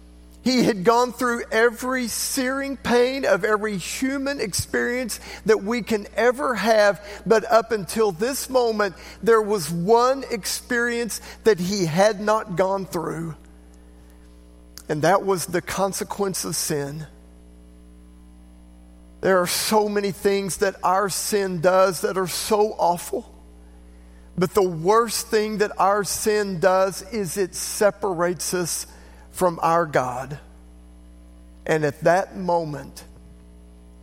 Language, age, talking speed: English, 50-69, 125 wpm